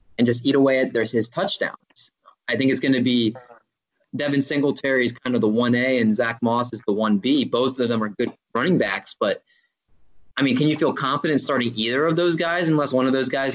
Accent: American